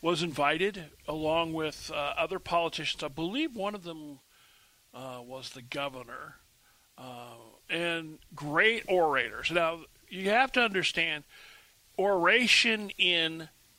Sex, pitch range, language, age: male, 145-190 Hz, English, 40-59